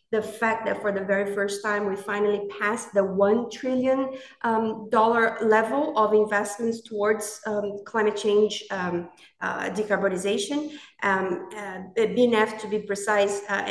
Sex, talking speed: female, 135 wpm